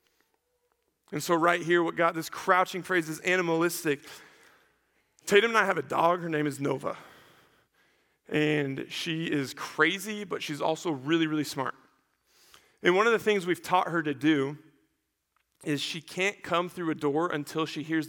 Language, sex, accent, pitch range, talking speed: English, male, American, 155-185 Hz, 170 wpm